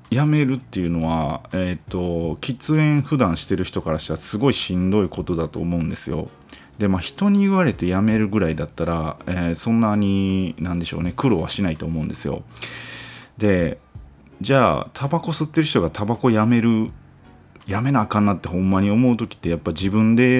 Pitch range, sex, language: 85-120 Hz, male, Japanese